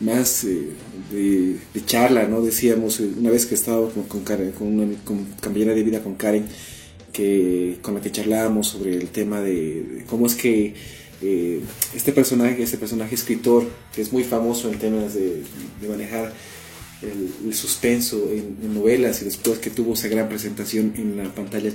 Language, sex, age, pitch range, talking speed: Spanish, male, 30-49, 105-115 Hz, 190 wpm